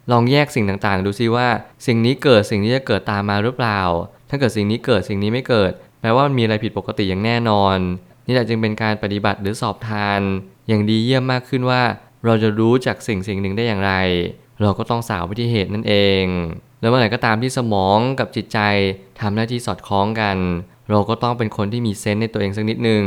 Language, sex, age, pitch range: Thai, male, 20-39, 100-120 Hz